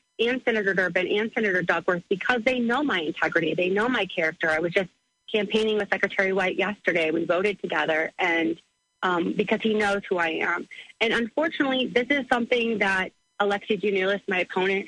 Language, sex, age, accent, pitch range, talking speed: English, female, 30-49, American, 180-230 Hz, 180 wpm